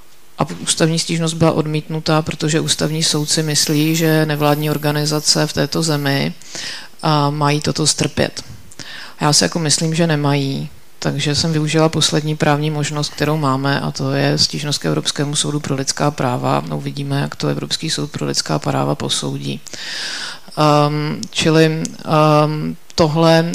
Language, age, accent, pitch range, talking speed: Czech, 30-49, native, 150-165 Hz, 145 wpm